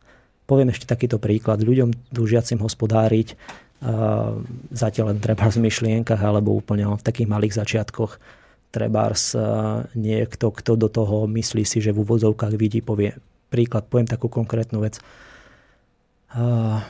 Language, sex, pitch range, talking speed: Slovak, male, 110-120 Hz, 135 wpm